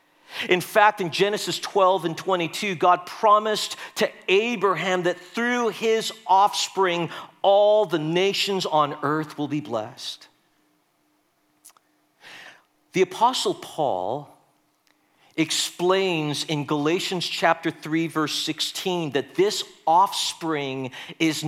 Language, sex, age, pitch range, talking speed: English, male, 50-69, 160-215 Hz, 105 wpm